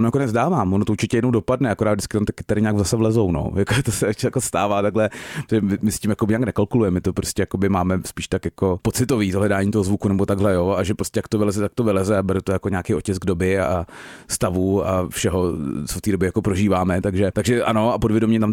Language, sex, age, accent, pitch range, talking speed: Czech, male, 30-49, native, 95-110 Hz, 235 wpm